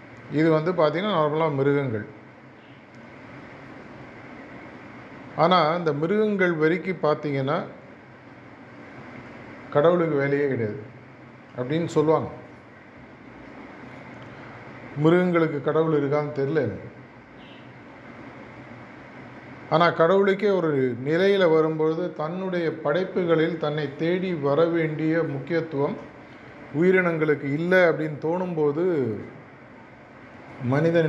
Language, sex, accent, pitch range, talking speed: Tamil, male, native, 135-165 Hz, 70 wpm